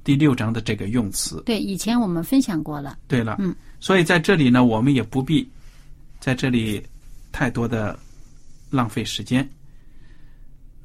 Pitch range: 125-155 Hz